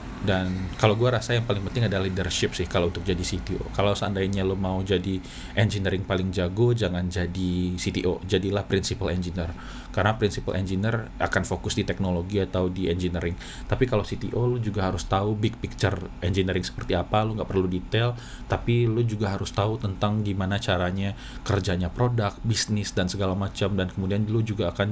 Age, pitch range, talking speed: 20-39, 90-105 Hz, 175 wpm